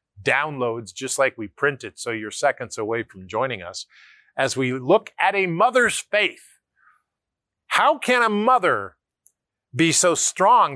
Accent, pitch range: American, 120-175 Hz